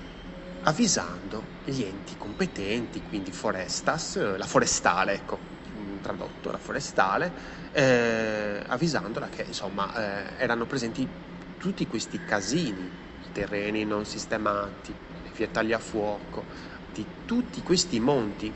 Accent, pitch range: native, 95-130 Hz